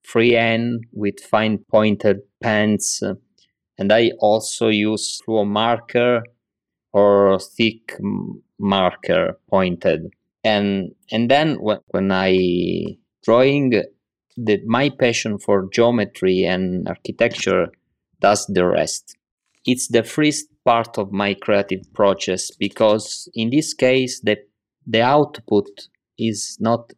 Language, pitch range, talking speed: English, 100-120 Hz, 115 wpm